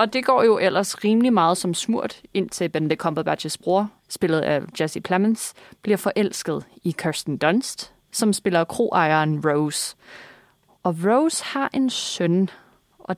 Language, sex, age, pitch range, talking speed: Danish, female, 20-39, 170-215 Hz, 150 wpm